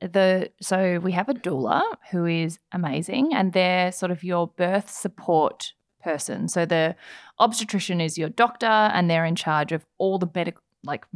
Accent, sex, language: Australian, female, English